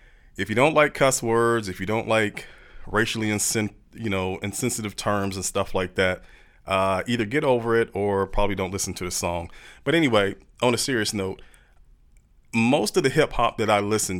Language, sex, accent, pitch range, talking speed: English, male, American, 95-130 Hz, 175 wpm